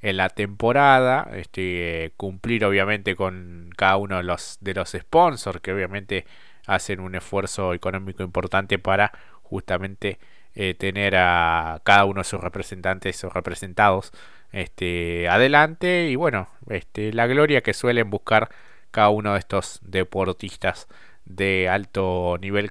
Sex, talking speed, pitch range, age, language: male, 135 wpm, 95-110 Hz, 20-39, Spanish